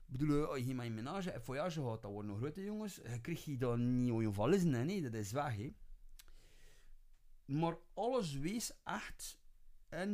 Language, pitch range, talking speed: Dutch, 110-165 Hz, 180 wpm